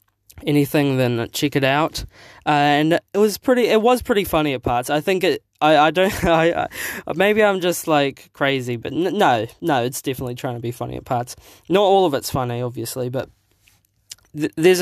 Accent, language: Australian, English